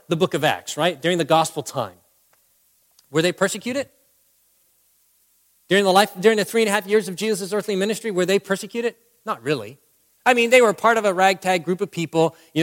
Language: English